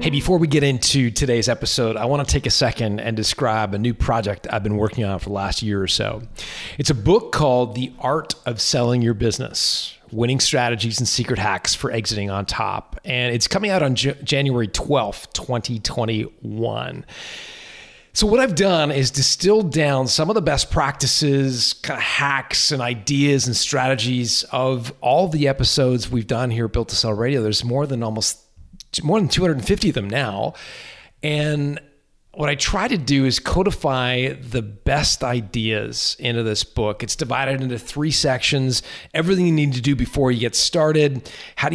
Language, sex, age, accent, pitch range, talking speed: English, male, 30-49, American, 110-140 Hz, 185 wpm